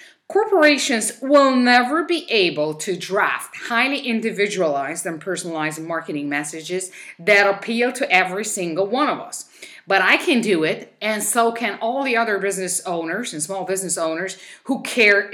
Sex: female